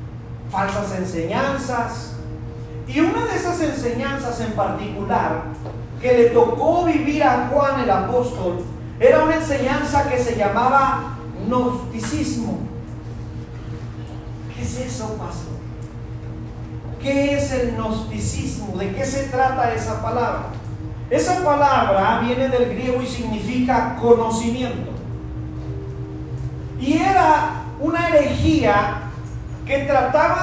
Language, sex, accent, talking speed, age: Spanish, male, Mexican, 105 wpm, 40-59